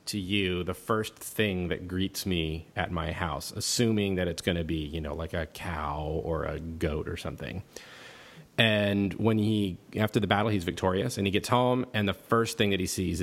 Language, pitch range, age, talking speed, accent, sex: English, 90-115 Hz, 30-49, 205 wpm, American, male